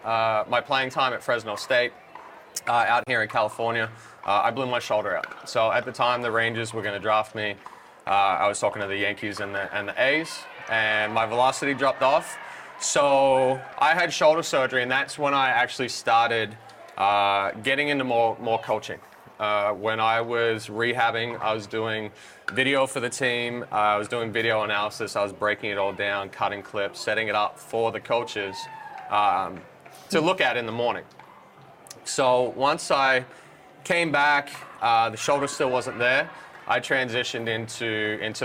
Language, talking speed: English, 185 wpm